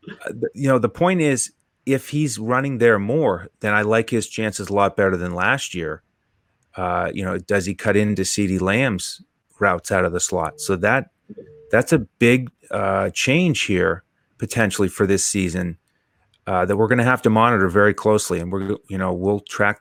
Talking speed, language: 190 wpm, English